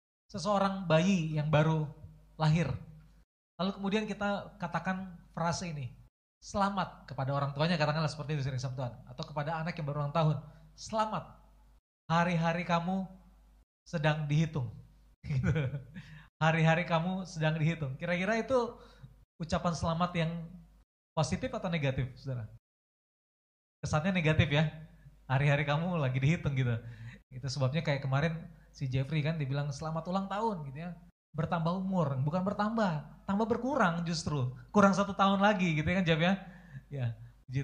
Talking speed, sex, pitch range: 130 wpm, male, 140-190 Hz